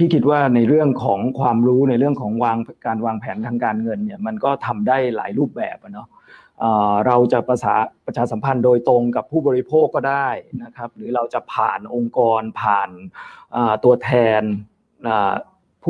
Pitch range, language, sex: 115-140 Hz, Thai, male